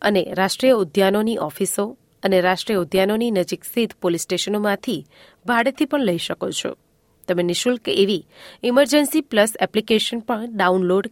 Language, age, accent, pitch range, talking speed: Gujarati, 30-49, native, 185-235 Hz, 115 wpm